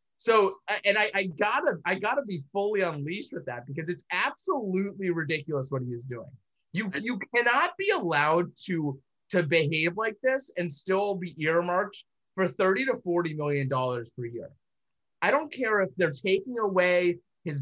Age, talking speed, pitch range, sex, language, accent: 20-39, 170 wpm, 145-205 Hz, male, English, American